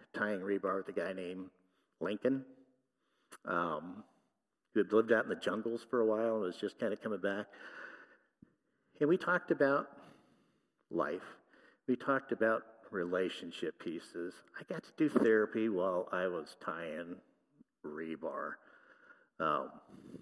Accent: American